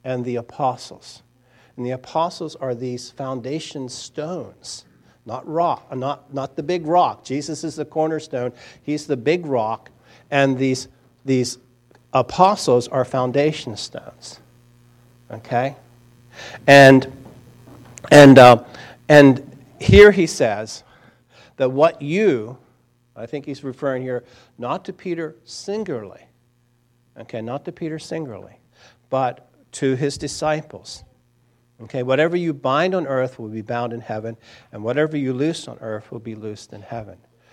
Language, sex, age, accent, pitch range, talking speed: English, male, 50-69, American, 120-145 Hz, 135 wpm